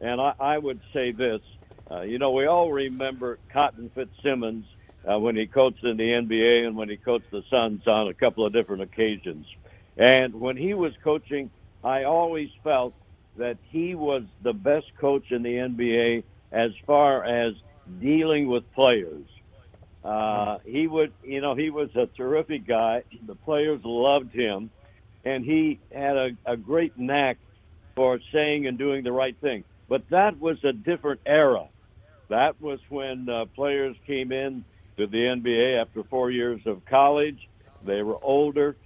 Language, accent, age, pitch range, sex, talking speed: English, American, 60-79, 110-145 Hz, male, 160 wpm